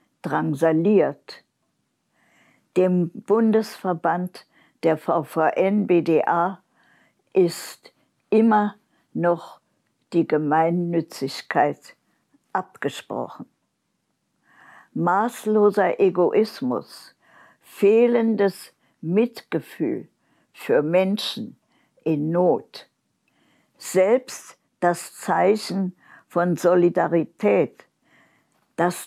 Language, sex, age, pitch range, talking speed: German, female, 60-79, 165-205 Hz, 50 wpm